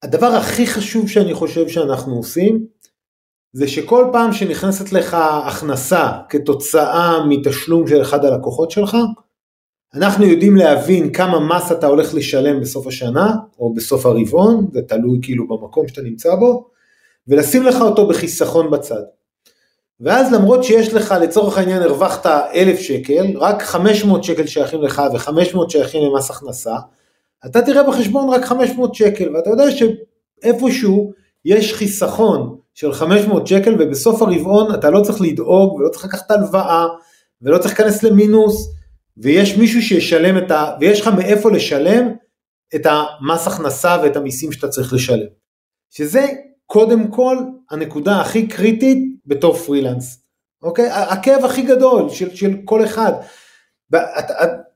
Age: 40-59